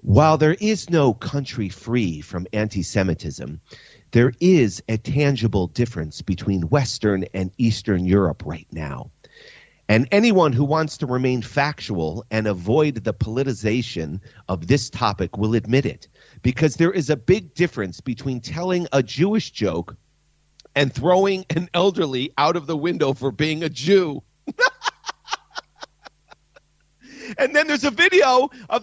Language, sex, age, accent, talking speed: English, male, 40-59, American, 135 wpm